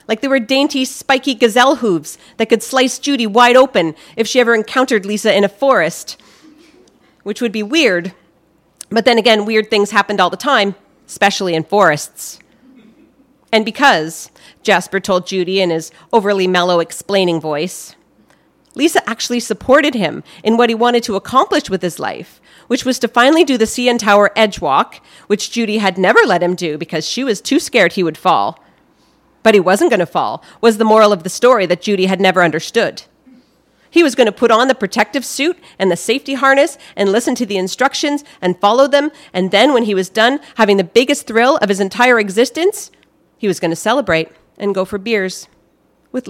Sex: female